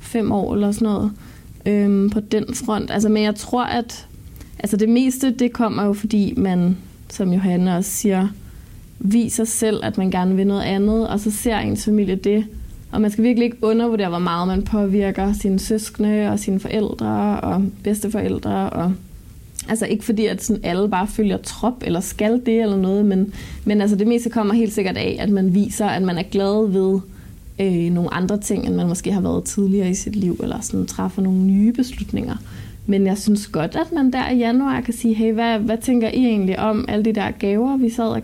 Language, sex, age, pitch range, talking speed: Danish, female, 20-39, 195-225 Hz, 200 wpm